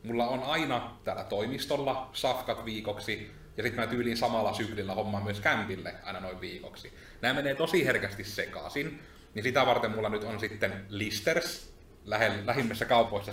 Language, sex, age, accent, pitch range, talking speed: Finnish, male, 30-49, native, 95-120 Hz, 155 wpm